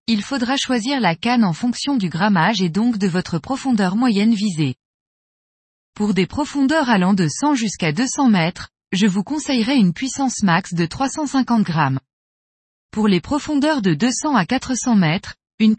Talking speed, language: 165 wpm, French